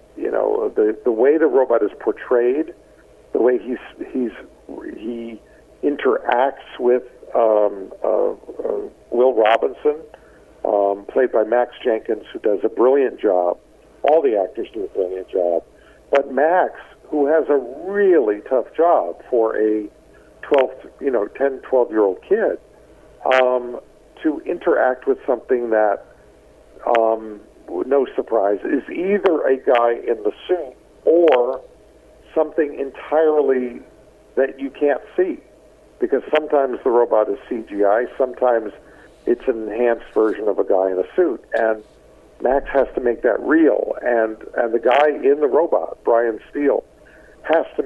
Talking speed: 145 wpm